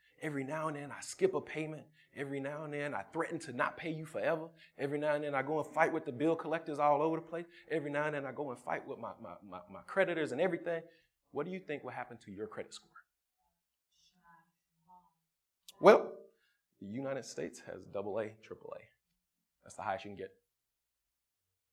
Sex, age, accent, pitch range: male, 20-39, American, 95-150 Hz